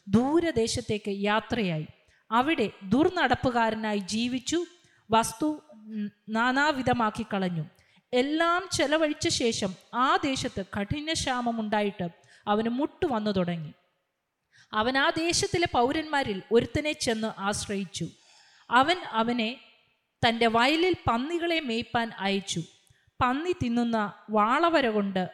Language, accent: Malayalam, native